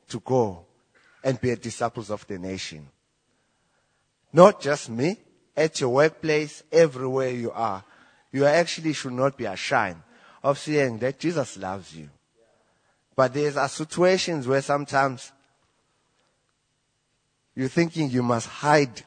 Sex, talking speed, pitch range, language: male, 130 wpm, 125-165 Hz, English